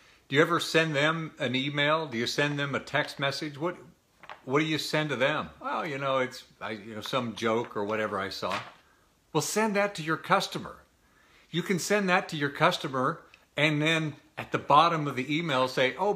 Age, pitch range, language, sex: 50-69, 130-175 Hz, English, male